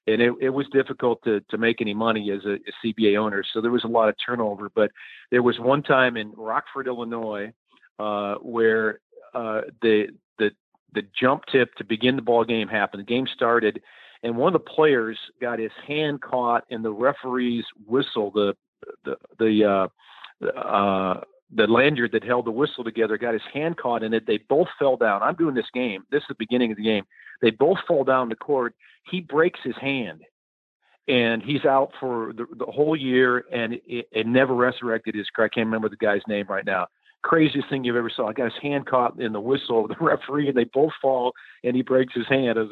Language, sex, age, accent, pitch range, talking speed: English, male, 40-59, American, 110-135 Hz, 215 wpm